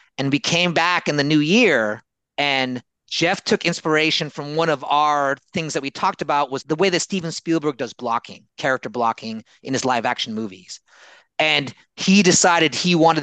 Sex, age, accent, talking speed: male, 30-49, American, 185 wpm